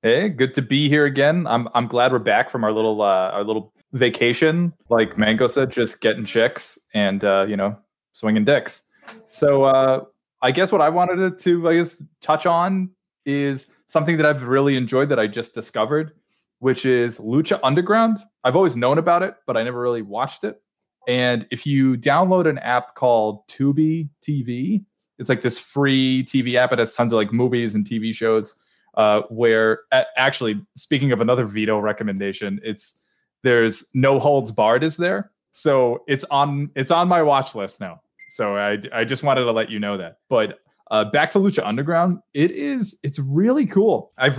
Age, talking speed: 20-39, 185 wpm